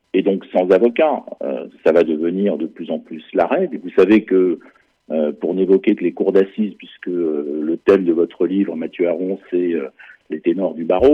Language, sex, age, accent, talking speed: French, male, 50-69, French, 205 wpm